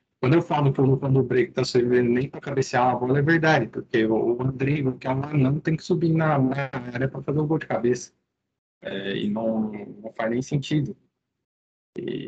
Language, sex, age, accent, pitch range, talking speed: Portuguese, male, 20-39, Brazilian, 115-140 Hz, 215 wpm